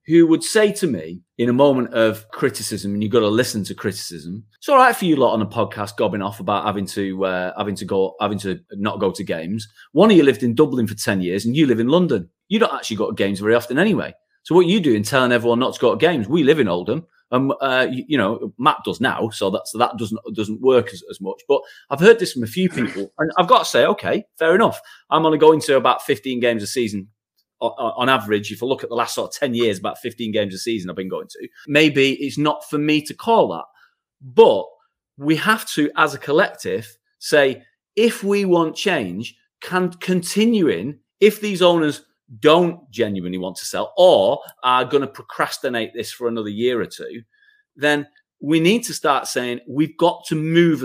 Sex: male